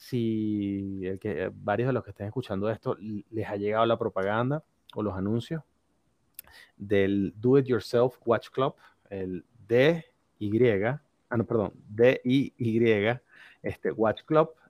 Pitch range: 100-125 Hz